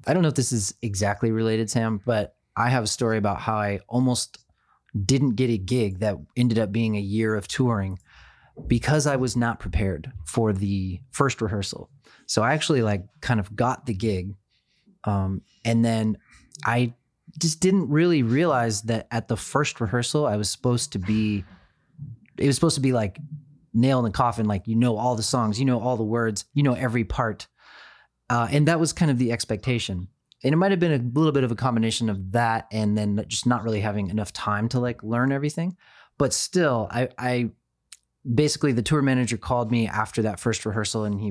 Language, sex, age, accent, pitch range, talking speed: English, male, 30-49, American, 105-130 Hz, 200 wpm